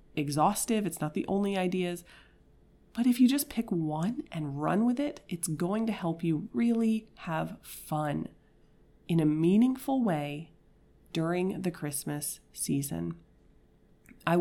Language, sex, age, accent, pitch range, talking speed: English, female, 30-49, American, 160-205 Hz, 135 wpm